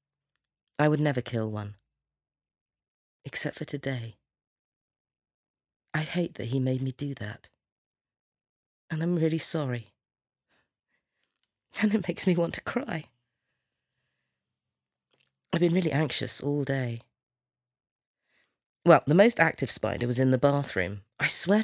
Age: 40-59